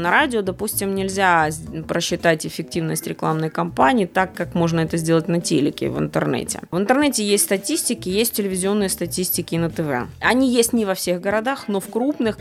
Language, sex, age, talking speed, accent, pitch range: Russian, female, 20-39, 175 wpm, native, 165-215 Hz